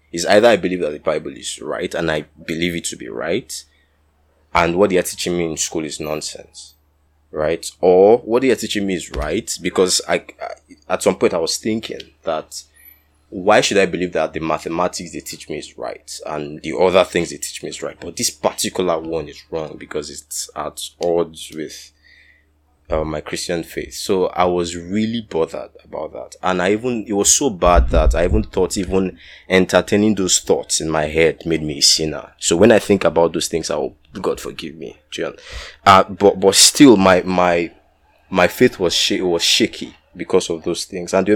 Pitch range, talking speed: 80-95 Hz, 200 wpm